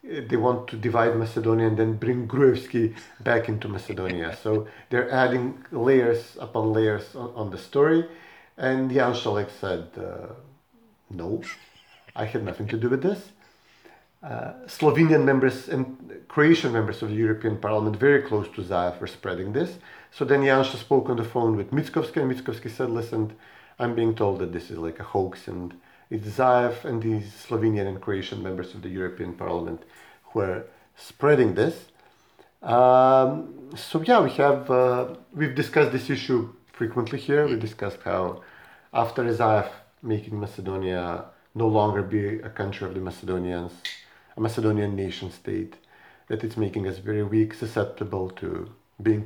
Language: English